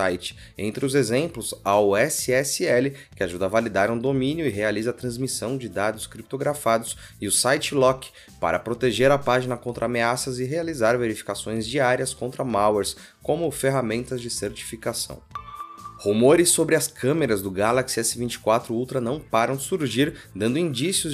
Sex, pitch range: male, 110-135 Hz